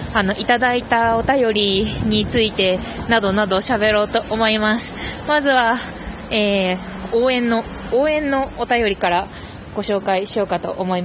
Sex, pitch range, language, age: female, 215-275 Hz, Japanese, 20-39